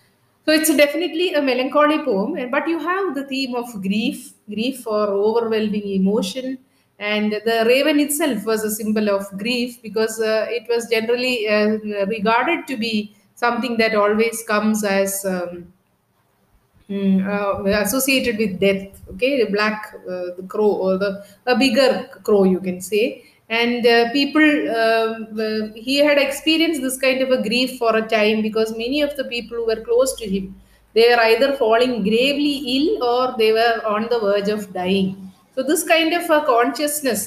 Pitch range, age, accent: 210-260 Hz, 30-49, Indian